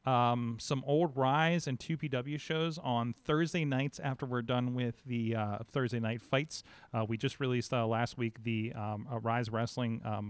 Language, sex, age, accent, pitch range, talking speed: English, male, 30-49, American, 115-135 Hz, 185 wpm